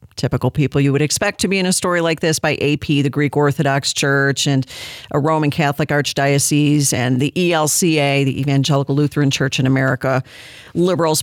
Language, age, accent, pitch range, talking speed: English, 50-69, American, 140-185 Hz, 175 wpm